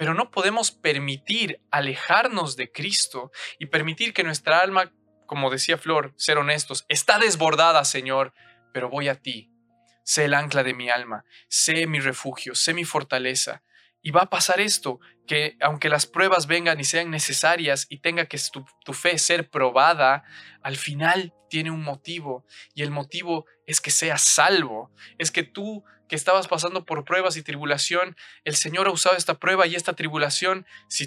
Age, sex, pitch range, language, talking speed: 20-39, male, 140-180 Hz, Spanish, 175 wpm